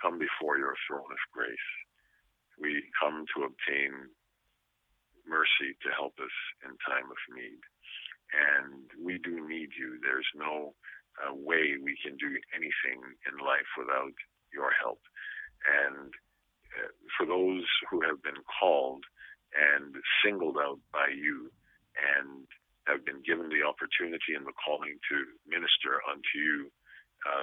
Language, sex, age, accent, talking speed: English, male, 50-69, American, 140 wpm